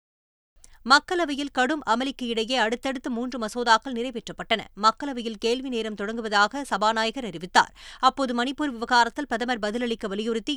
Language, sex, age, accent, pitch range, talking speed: Tamil, female, 20-39, native, 220-255 Hz, 115 wpm